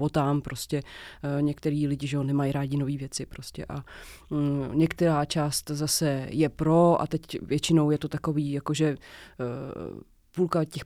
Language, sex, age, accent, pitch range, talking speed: Czech, female, 30-49, native, 150-185 Hz, 155 wpm